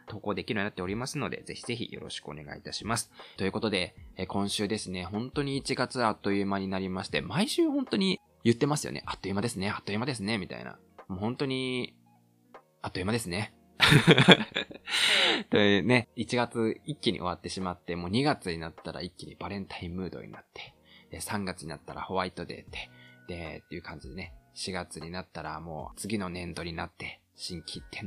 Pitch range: 85-110 Hz